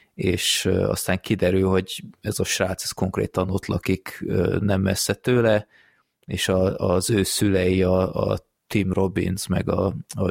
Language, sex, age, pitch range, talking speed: Hungarian, male, 20-39, 95-105 Hz, 150 wpm